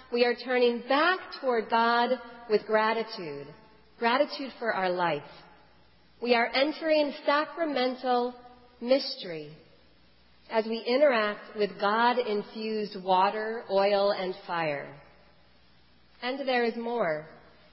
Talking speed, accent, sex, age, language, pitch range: 100 wpm, American, female, 40-59, English, 180-255 Hz